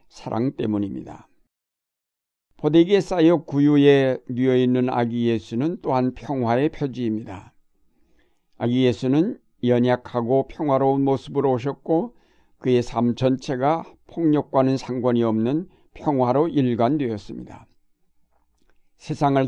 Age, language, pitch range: 60-79, Korean, 115-140 Hz